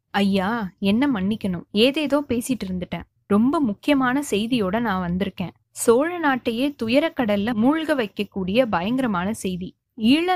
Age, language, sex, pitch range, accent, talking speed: 20-39, Tamil, female, 200-260 Hz, native, 115 wpm